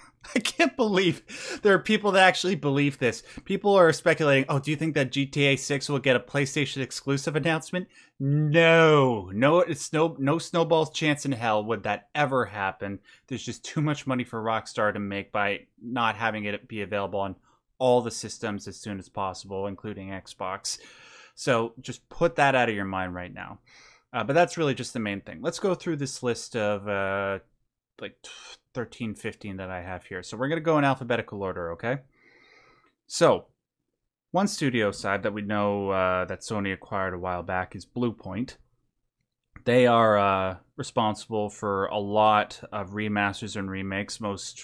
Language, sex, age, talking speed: English, male, 20-39, 180 wpm